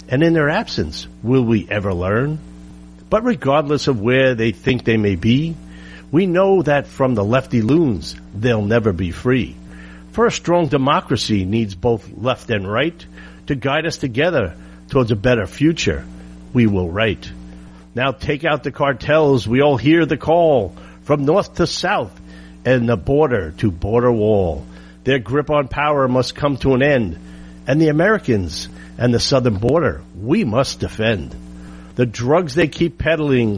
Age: 50-69